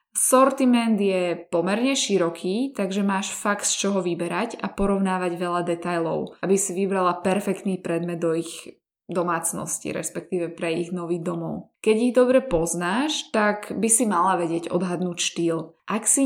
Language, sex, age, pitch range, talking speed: Slovak, female, 20-39, 175-210 Hz, 150 wpm